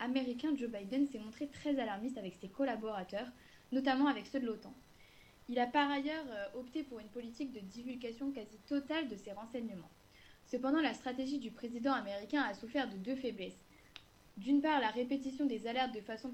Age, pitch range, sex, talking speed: 20-39, 220-270 Hz, female, 180 wpm